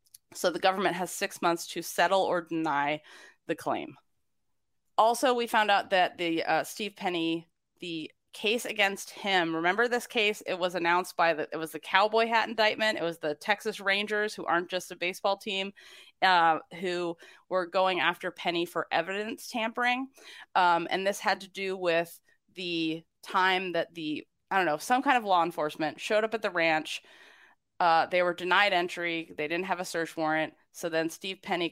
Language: English